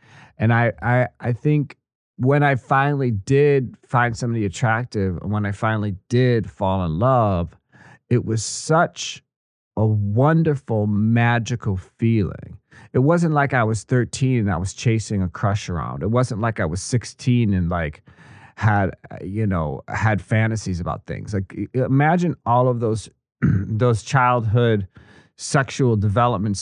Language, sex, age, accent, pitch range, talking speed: English, male, 30-49, American, 105-125 Hz, 140 wpm